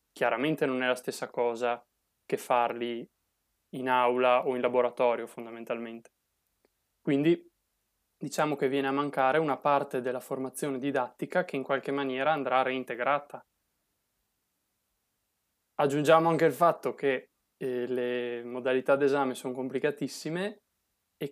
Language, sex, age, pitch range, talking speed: Italian, male, 20-39, 120-140 Hz, 120 wpm